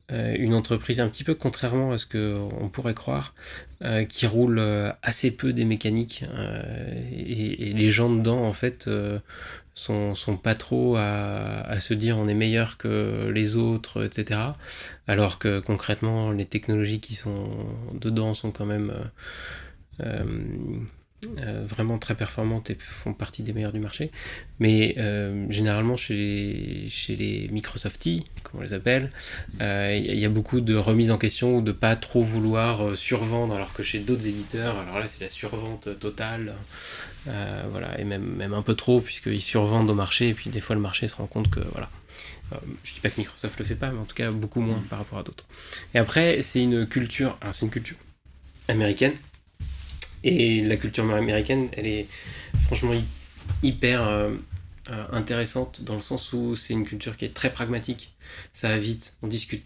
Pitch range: 105-115 Hz